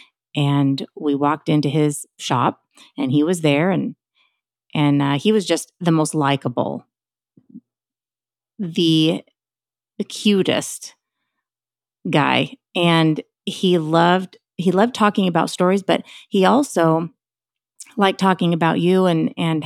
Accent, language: American, English